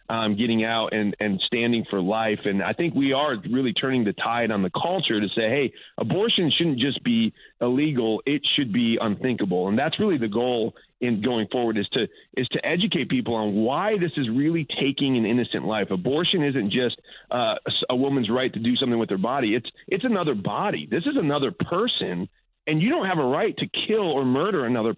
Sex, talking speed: male, 210 wpm